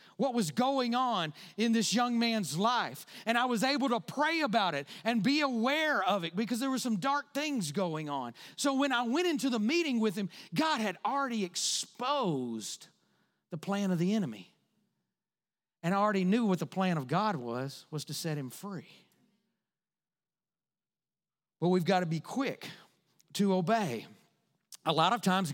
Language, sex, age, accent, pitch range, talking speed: English, male, 40-59, American, 165-225 Hz, 175 wpm